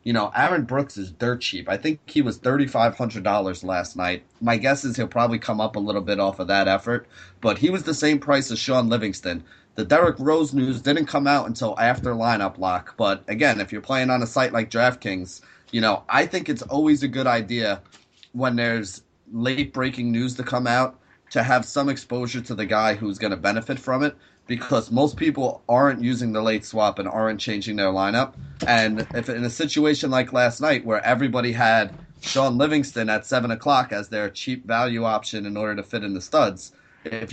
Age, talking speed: 30-49, 210 wpm